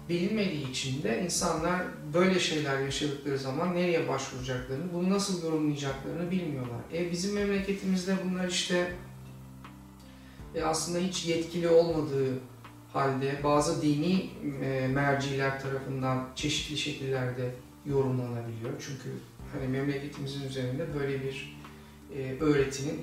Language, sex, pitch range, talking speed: Turkish, male, 130-175 Hz, 100 wpm